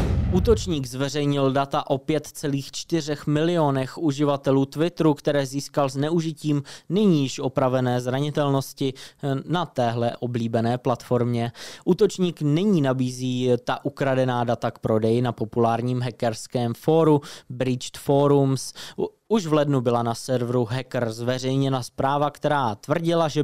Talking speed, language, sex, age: 115 wpm, Czech, male, 20-39